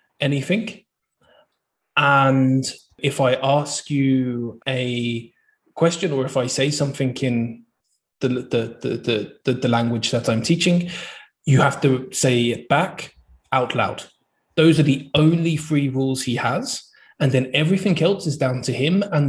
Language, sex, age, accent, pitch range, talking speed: English, male, 20-39, British, 120-145 Hz, 150 wpm